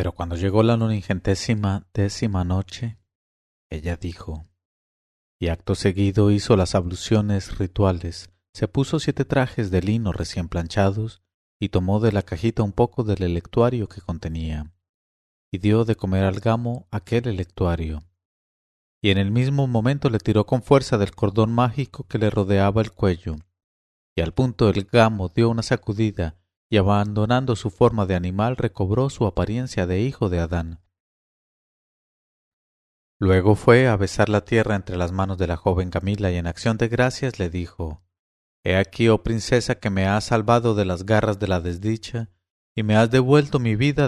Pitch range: 90-115 Hz